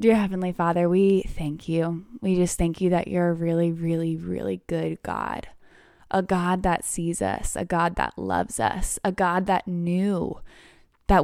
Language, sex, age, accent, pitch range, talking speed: English, female, 10-29, American, 170-195 Hz, 175 wpm